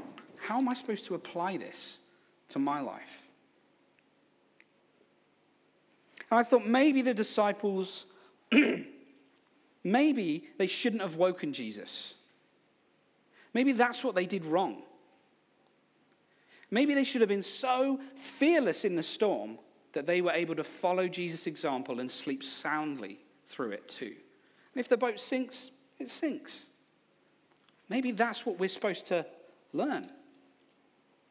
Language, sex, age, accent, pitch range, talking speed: English, male, 40-59, British, 180-260 Hz, 125 wpm